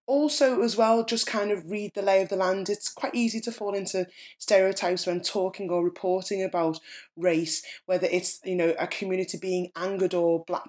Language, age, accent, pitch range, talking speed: English, 20-39, British, 180-205 Hz, 195 wpm